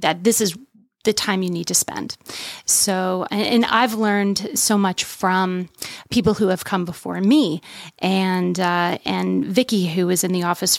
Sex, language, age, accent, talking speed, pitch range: female, English, 30-49, American, 170 wpm, 180-215 Hz